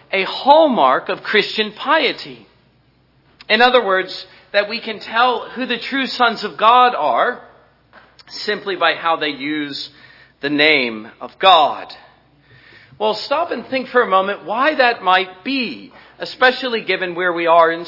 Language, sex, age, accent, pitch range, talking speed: English, male, 40-59, American, 170-230 Hz, 150 wpm